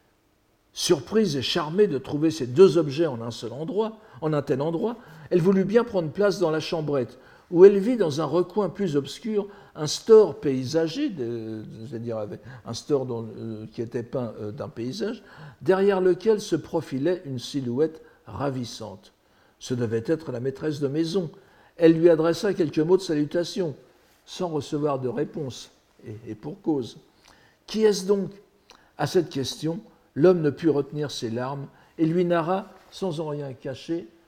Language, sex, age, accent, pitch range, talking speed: French, male, 60-79, French, 125-180 Hz, 165 wpm